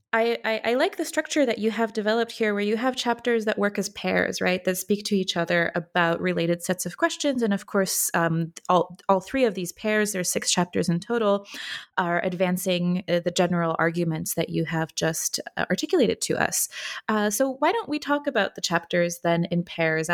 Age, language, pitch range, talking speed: 20-39, English, 170-220 Hz, 205 wpm